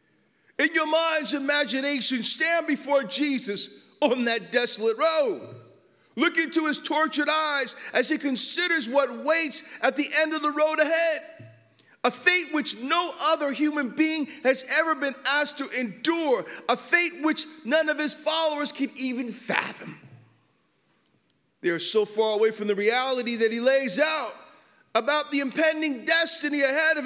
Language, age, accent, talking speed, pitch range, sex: English, 40-59, American, 155 wpm, 245-310 Hz, male